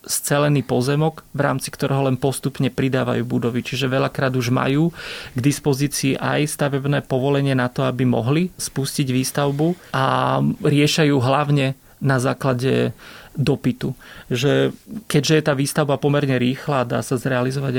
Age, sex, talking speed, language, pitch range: 30-49, male, 130 wpm, Slovak, 125-140 Hz